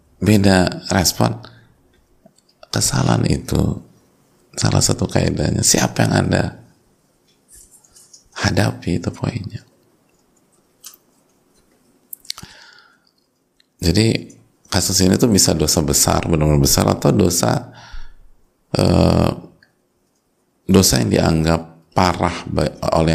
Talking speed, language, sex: 80 wpm, Indonesian, male